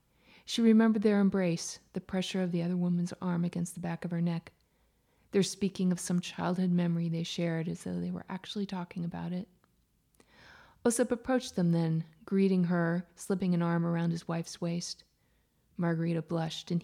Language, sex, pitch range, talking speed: English, female, 170-205 Hz, 175 wpm